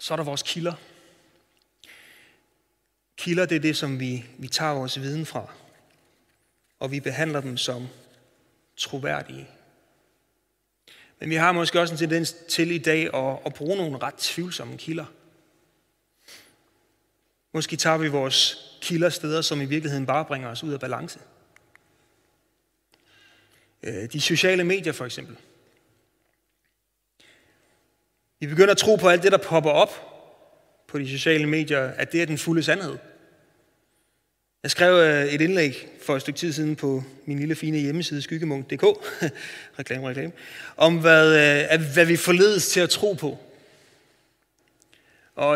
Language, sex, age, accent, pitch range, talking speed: Danish, male, 30-49, native, 140-170 Hz, 140 wpm